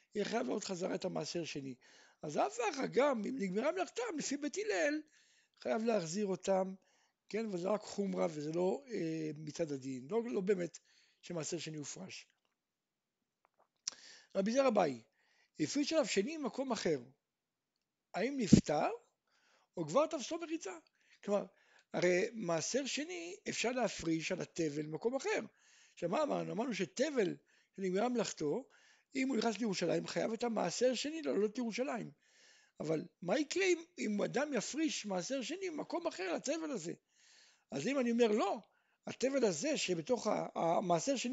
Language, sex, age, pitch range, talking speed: Hebrew, male, 60-79, 190-290 Hz, 135 wpm